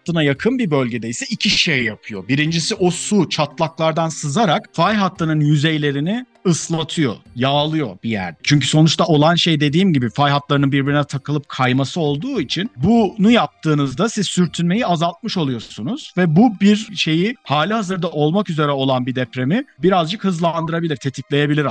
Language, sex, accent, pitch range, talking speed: Turkish, male, native, 150-195 Hz, 145 wpm